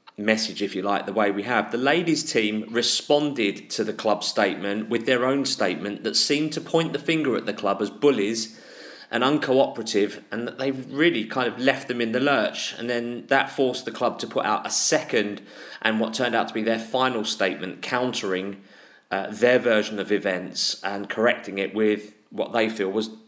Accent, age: British, 30-49